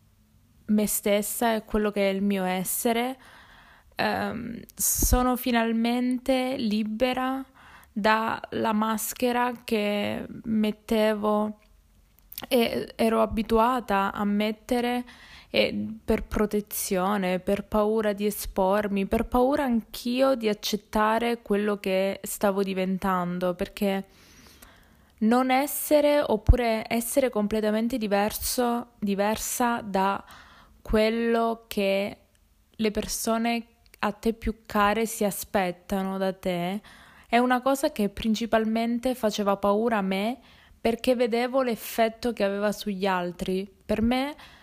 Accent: native